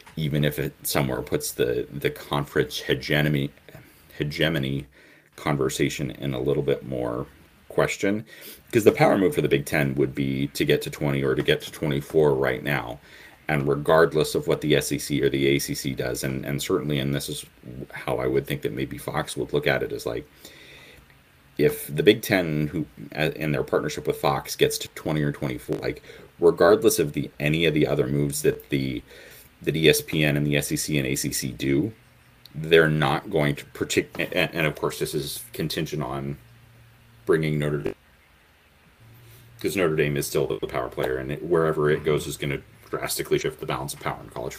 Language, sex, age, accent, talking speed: English, male, 30-49, American, 190 wpm